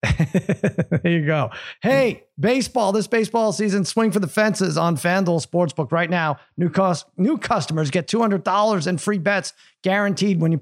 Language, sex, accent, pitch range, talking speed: English, male, American, 155-200 Hz, 165 wpm